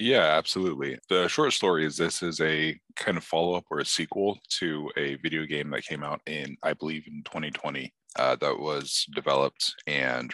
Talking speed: 185 wpm